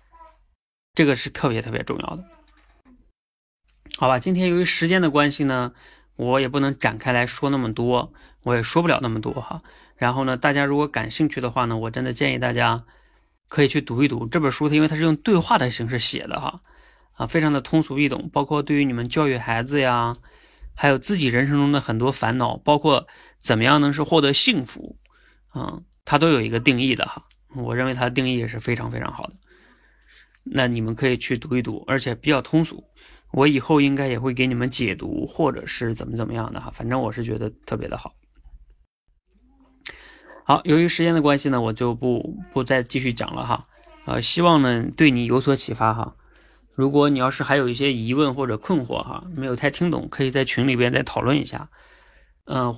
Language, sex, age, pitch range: Chinese, male, 20-39, 120-145 Hz